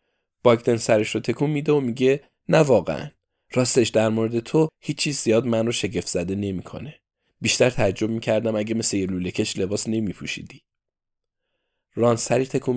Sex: male